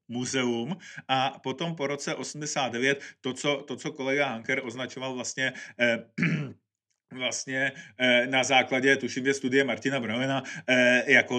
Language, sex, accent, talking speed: Czech, male, native, 120 wpm